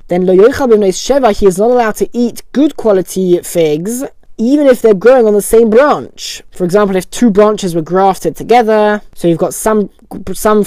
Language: English